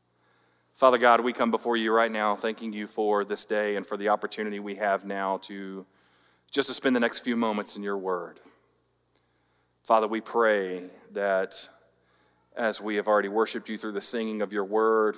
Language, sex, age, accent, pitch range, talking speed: English, male, 40-59, American, 95-110 Hz, 185 wpm